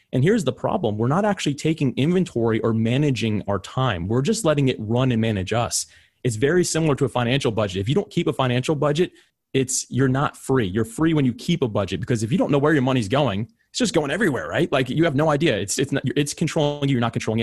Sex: male